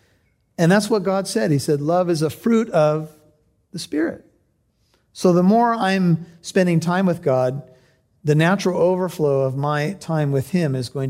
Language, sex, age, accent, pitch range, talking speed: English, male, 40-59, American, 145-195 Hz, 175 wpm